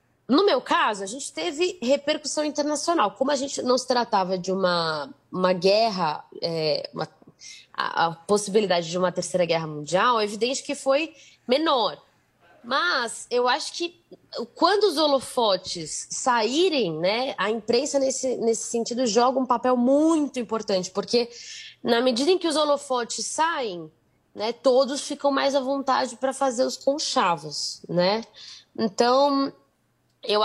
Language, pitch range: Portuguese, 200-275 Hz